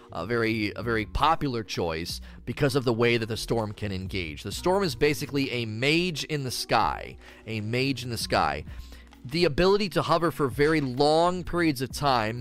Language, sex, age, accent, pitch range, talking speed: English, male, 30-49, American, 110-140 Hz, 190 wpm